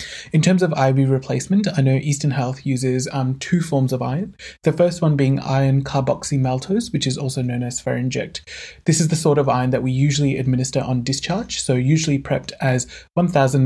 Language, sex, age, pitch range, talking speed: English, male, 20-39, 125-150 Hz, 195 wpm